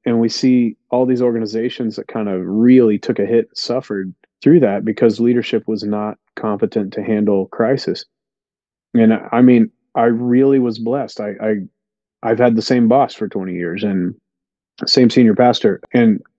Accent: American